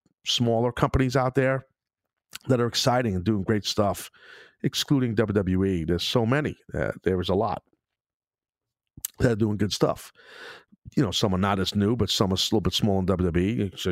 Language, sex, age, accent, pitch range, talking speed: English, male, 50-69, American, 95-115 Hz, 185 wpm